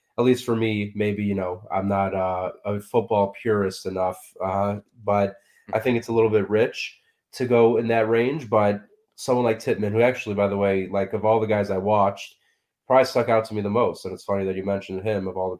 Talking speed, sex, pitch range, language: 235 wpm, male, 95-110 Hz, English